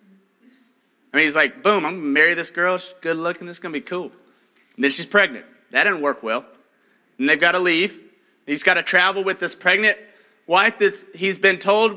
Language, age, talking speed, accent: English, 30-49, 225 wpm, American